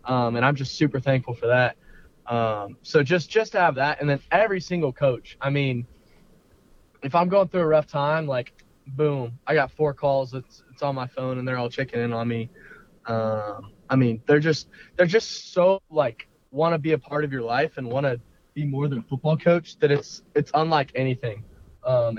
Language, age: English, 20-39